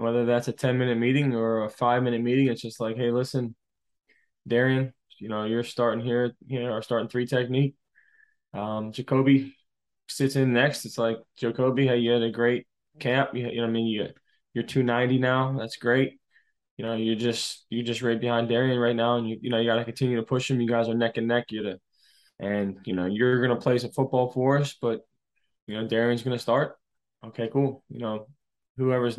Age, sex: 10-29, male